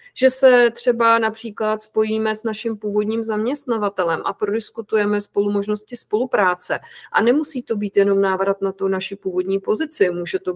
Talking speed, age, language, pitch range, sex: 155 wpm, 30-49, English, 200-220 Hz, female